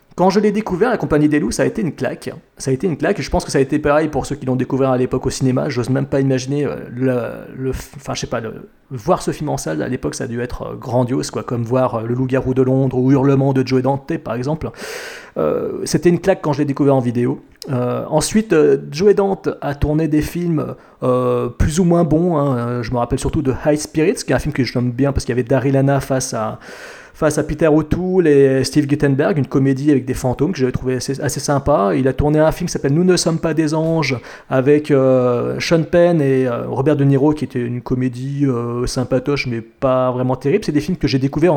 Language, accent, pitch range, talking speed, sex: French, French, 130-160 Hz, 255 wpm, male